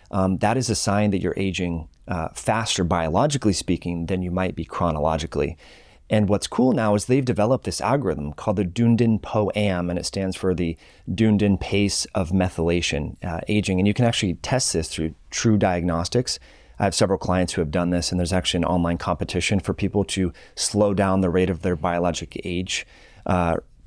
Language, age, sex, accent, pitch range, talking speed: English, 30-49, male, American, 90-110 Hz, 190 wpm